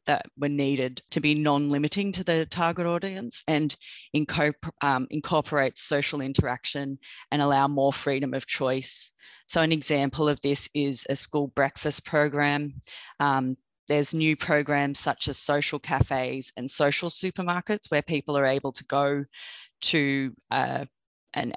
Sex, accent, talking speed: female, Australian, 140 wpm